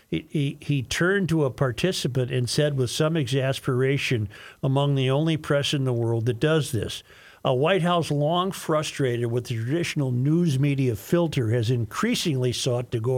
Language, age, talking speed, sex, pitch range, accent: English, 50-69, 175 wpm, male, 120-150 Hz, American